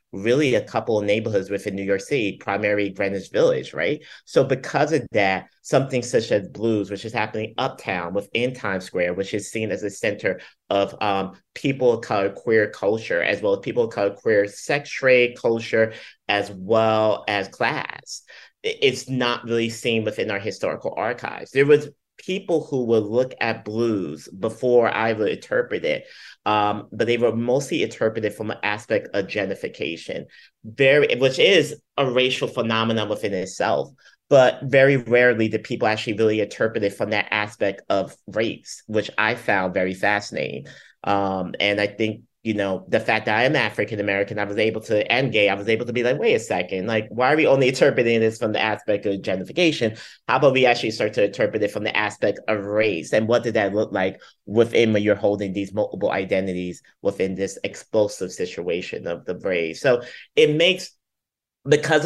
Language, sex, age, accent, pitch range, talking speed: English, male, 30-49, American, 105-135 Hz, 180 wpm